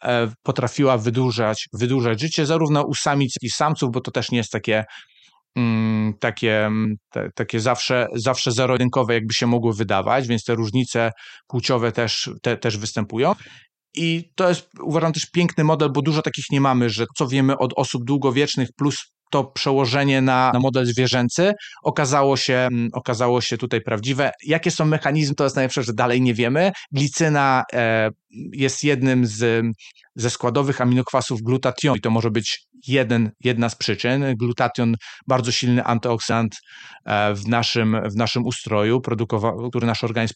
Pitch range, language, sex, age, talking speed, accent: 115-135 Hz, Polish, male, 30-49, 150 wpm, native